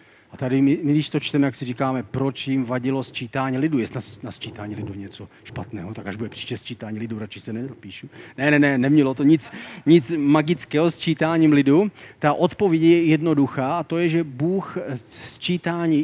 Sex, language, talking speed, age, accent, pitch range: male, Czech, 185 wpm, 40-59, native, 125-160 Hz